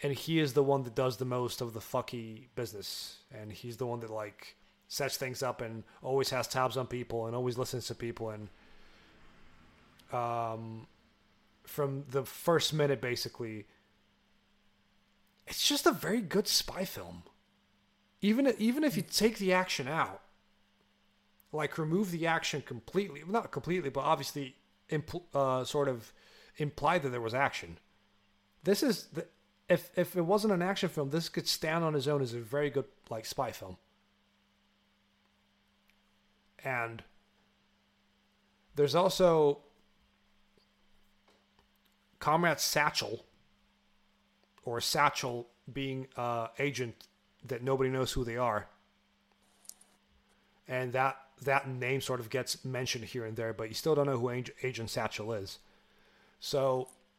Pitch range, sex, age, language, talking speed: 120-150 Hz, male, 30-49, English, 140 wpm